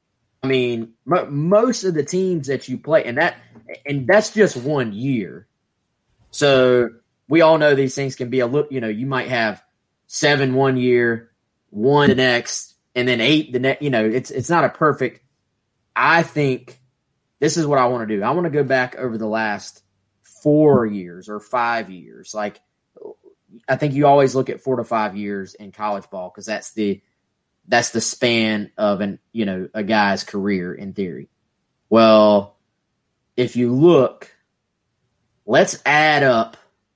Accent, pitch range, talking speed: American, 110-140 Hz, 175 wpm